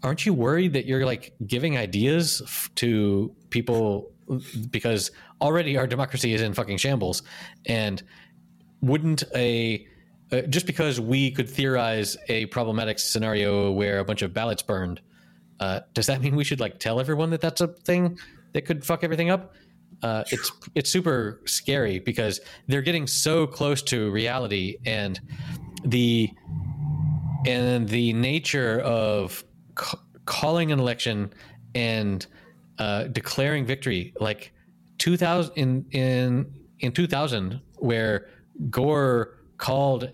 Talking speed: 135 wpm